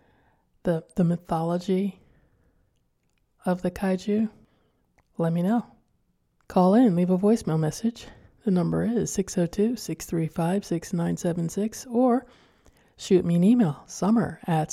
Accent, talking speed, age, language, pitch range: American, 105 wpm, 20-39, English, 165-190 Hz